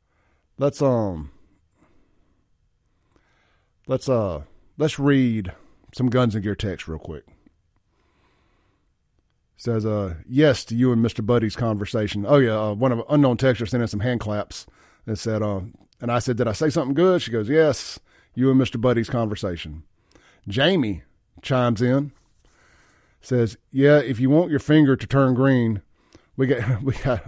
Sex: male